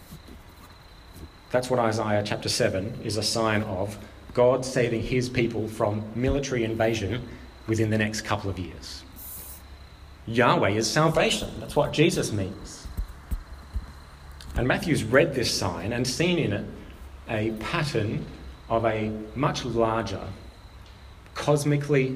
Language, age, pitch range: English, 30-49, 95-115 Hz